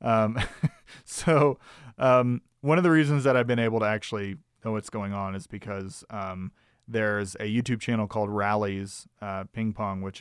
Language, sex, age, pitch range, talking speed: English, male, 30-49, 105-125 Hz, 175 wpm